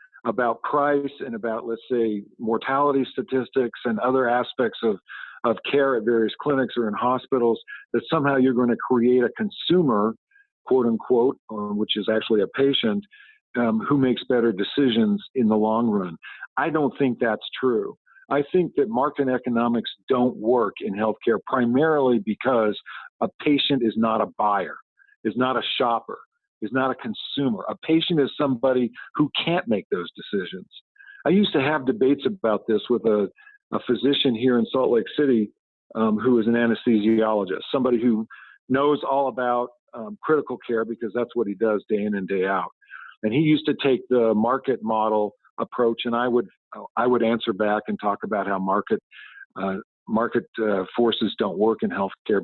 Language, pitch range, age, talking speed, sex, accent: English, 110-140 Hz, 50-69, 175 wpm, male, American